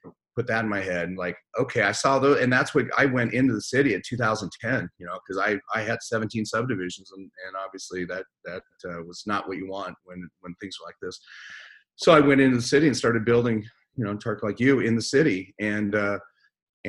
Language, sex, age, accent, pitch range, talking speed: English, male, 40-59, American, 100-120 Hz, 235 wpm